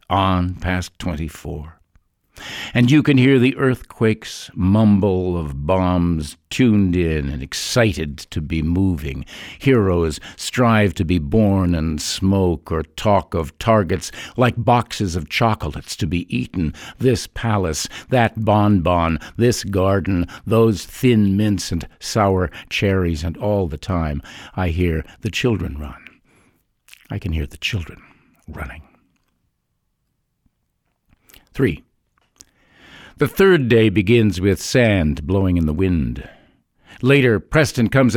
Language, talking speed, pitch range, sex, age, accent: English, 125 wpm, 85-115 Hz, male, 60-79, American